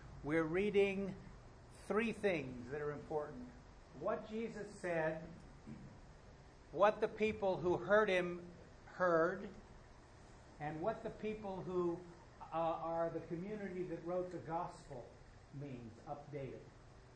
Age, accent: 60-79, American